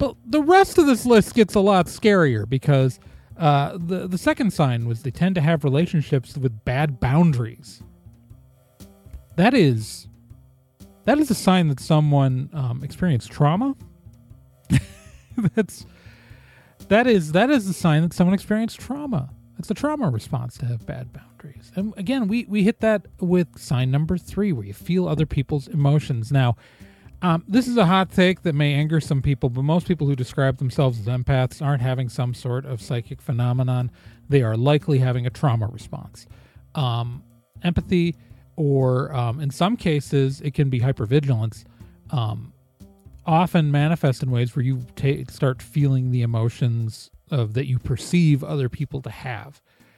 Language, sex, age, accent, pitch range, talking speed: English, male, 30-49, American, 120-165 Hz, 160 wpm